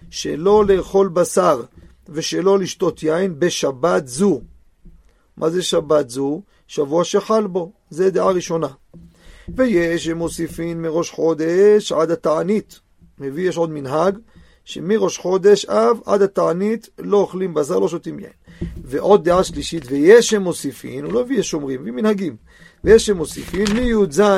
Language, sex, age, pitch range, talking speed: Hebrew, male, 40-59, 150-205 Hz, 130 wpm